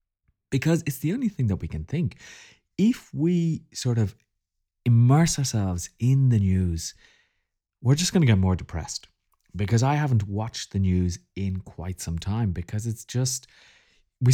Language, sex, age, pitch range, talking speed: English, male, 30-49, 95-140 Hz, 165 wpm